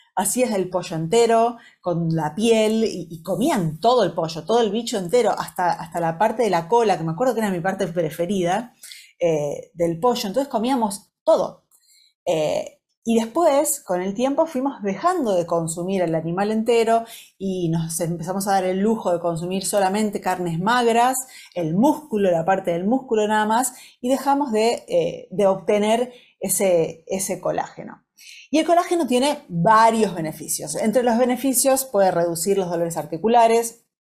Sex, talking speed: female, 165 wpm